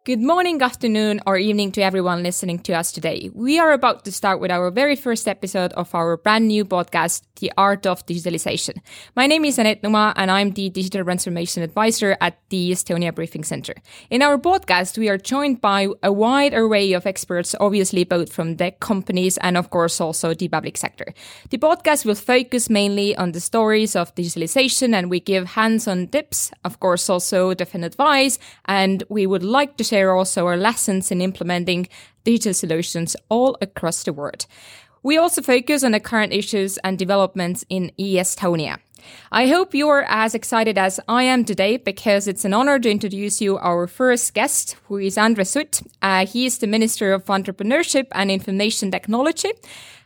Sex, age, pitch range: female, 20-39, 180-230 Hz